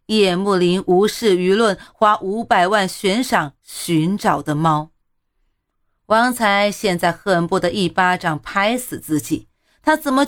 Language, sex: Chinese, female